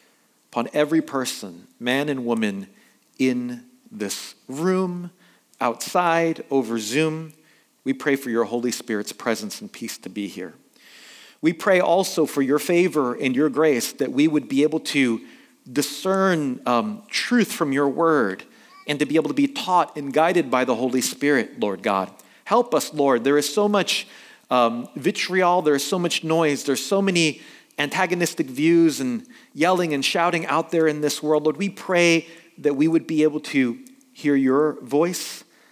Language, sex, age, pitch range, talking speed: English, male, 40-59, 125-180 Hz, 170 wpm